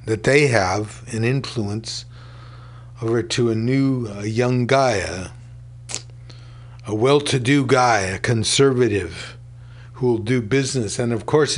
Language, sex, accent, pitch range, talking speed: English, male, American, 120-130 Hz, 125 wpm